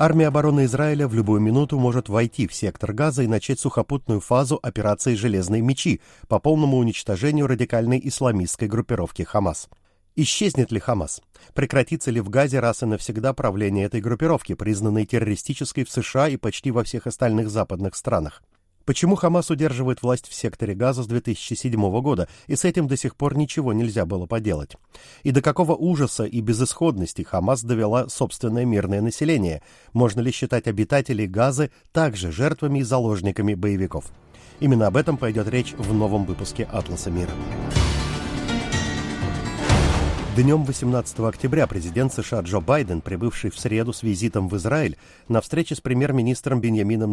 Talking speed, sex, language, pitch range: 150 wpm, male, Russian, 105-135 Hz